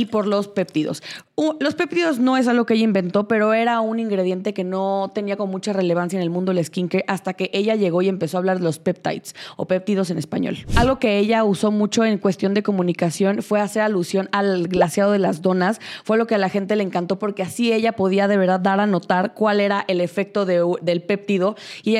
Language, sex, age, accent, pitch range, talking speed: Spanish, female, 20-39, Mexican, 185-215 Hz, 235 wpm